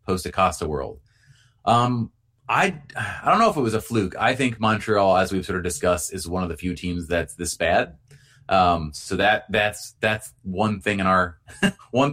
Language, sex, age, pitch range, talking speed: English, male, 30-49, 95-115 Hz, 200 wpm